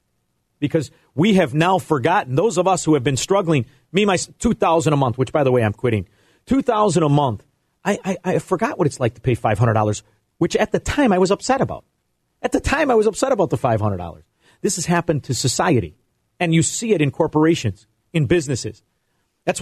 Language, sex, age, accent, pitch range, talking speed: English, male, 40-59, American, 120-175 Hz, 205 wpm